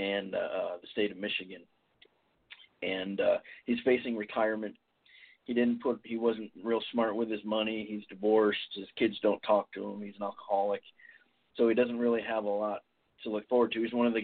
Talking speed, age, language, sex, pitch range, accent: 200 wpm, 40-59, English, male, 100-115 Hz, American